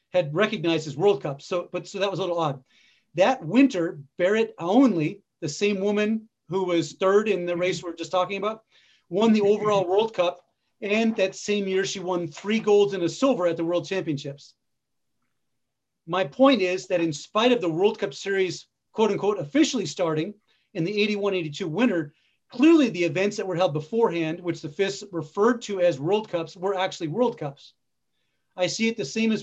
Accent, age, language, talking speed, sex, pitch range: American, 40-59, English, 195 wpm, male, 165-200 Hz